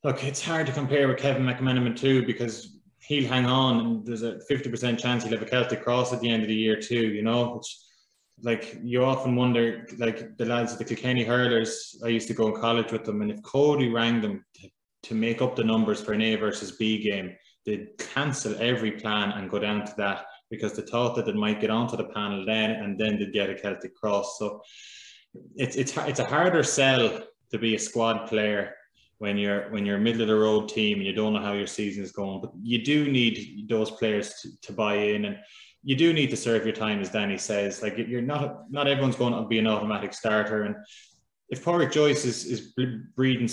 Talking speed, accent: 225 wpm, Irish